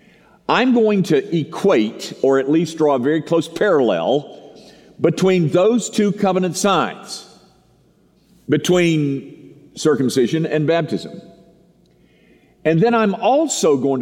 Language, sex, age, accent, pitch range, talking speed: English, male, 50-69, American, 155-205 Hz, 110 wpm